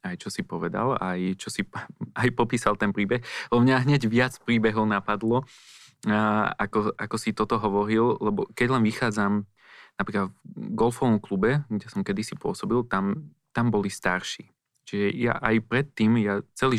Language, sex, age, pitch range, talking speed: Slovak, male, 20-39, 100-120 Hz, 160 wpm